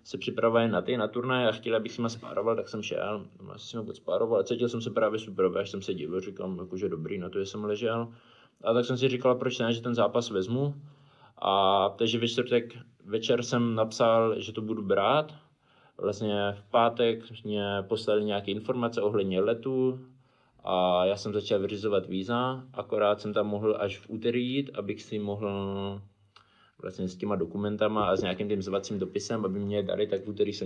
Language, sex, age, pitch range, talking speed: Czech, male, 20-39, 100-120 Hz, 190 wpm